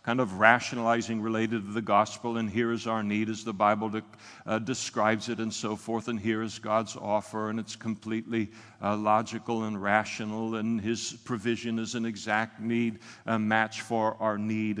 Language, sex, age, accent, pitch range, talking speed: English, male, 60-79, American, 105-120 Hz, 180 wpm